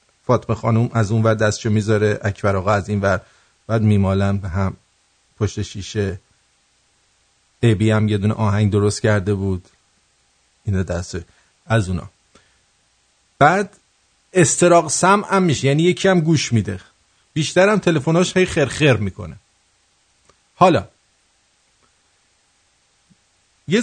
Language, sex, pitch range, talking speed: English, male, 110-175 Hz, 115 wpm